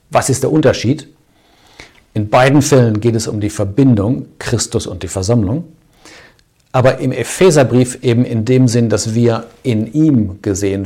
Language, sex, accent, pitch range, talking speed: German, male, German, 105-130 Hz, 155 wpm